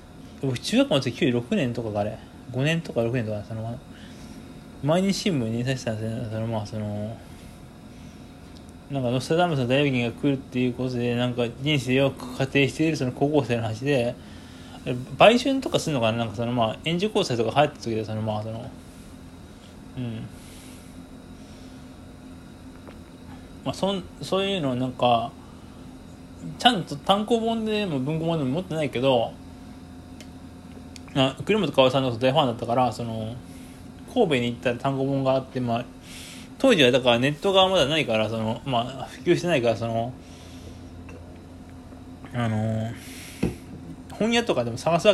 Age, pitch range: 20-39, 110-140 Hz